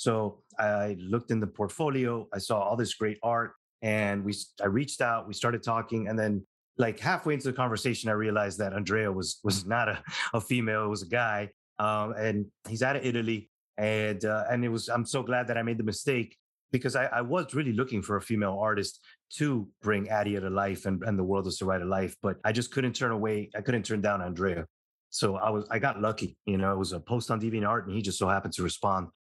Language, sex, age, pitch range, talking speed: English, male, 30-49, 100-115 Hz, 235 wpm